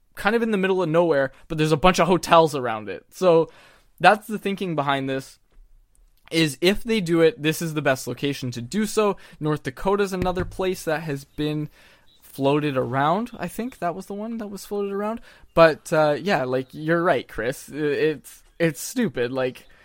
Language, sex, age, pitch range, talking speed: English, male, 20-39, 140-185 Hz, 195 wpm